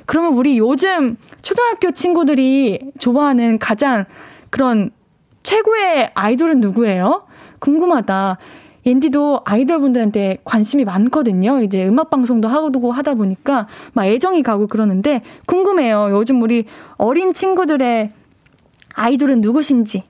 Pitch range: 225-325 Hz